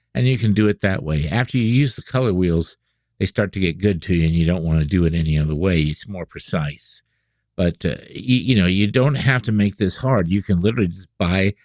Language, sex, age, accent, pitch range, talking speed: English, male, 50-69, American, 85-115 Hz, 260 wpm